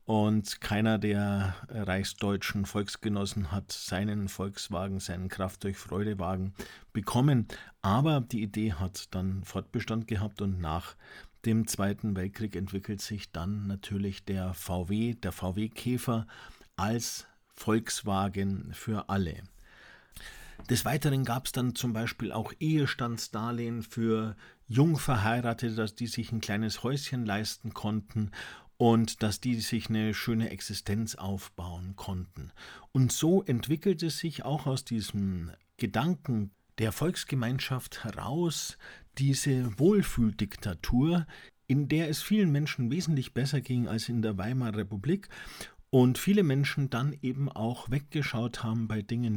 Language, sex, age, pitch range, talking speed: German, male, 50-69, 100-125 Hz, 120 wpm